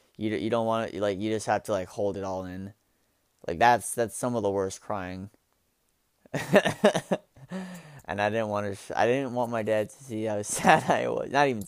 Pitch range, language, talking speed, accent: 95-115 Hz, English, 210 wpm, American